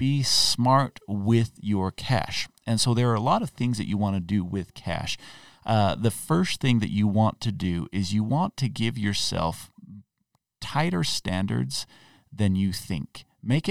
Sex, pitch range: male, 90-120 Hz